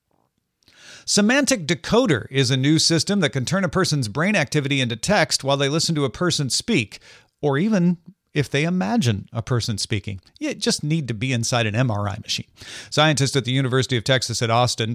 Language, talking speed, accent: English, 190 wpm, American